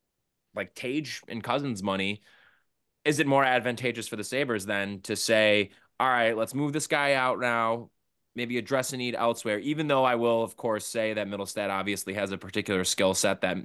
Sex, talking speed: male, 195 wpm